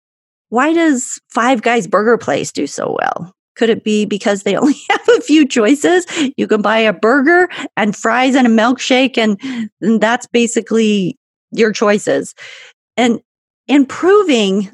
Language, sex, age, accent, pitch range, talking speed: English, female, 40-59, American, 205-275 Hz, 155 wpm